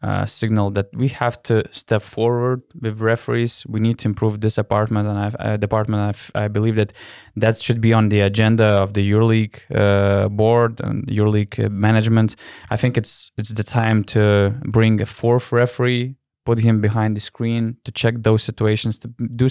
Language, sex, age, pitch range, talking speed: English, male, 20-39, 110-125 Hz, 190 wpm